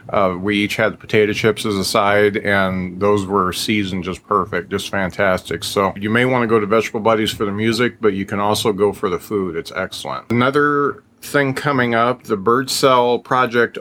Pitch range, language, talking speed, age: 105-125 Hz, English, 205 wpm, 40-59